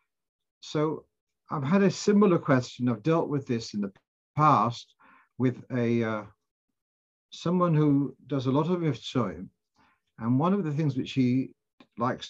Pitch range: 120-155 Hz